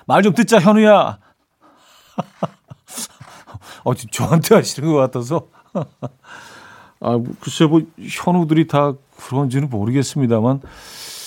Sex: male